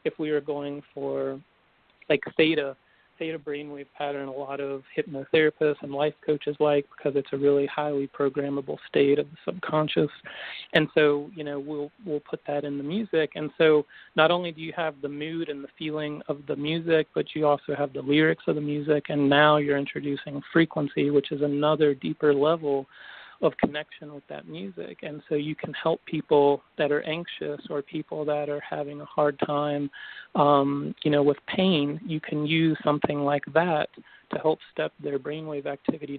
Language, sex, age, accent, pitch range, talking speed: English, male, 40-59, American, 145-155 Hz, 185 wpm